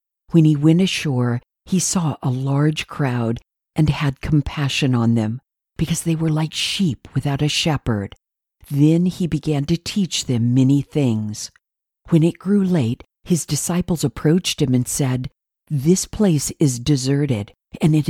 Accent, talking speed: American, 155 wpm